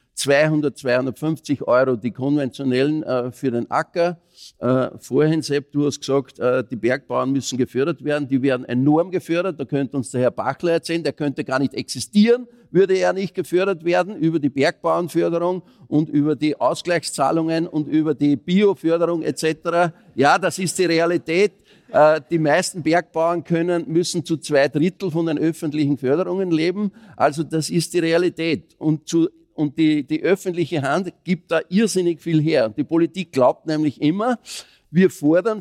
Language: German